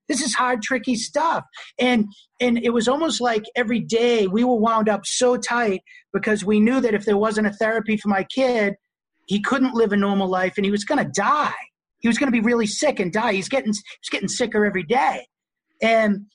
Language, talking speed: English, 230 wpm